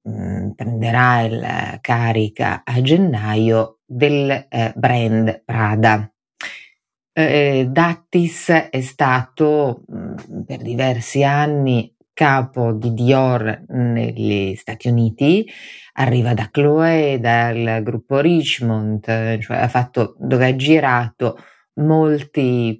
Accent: native